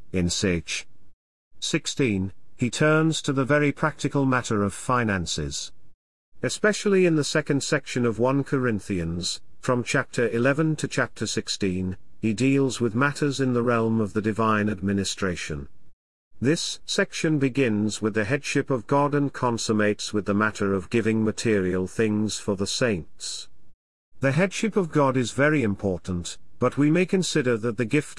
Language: English